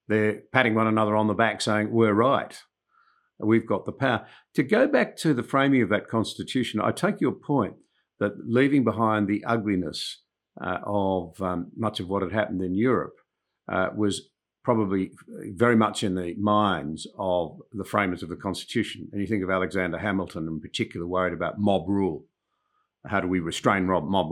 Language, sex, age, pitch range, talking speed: English, male, 50-69, 95-115 Hz, 180 wpm